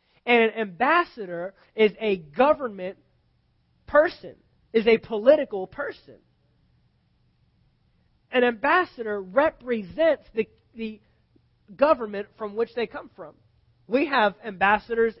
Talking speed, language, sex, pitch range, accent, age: 100 wpm, English, male, 200-260 Hz, American, 30-49